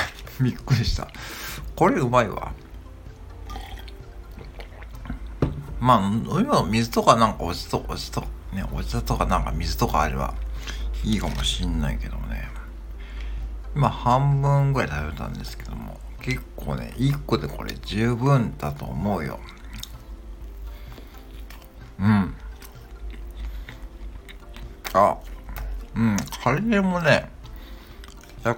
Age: 60-79